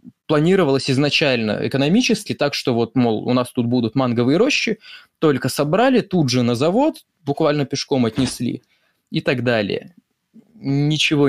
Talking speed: 140 wpm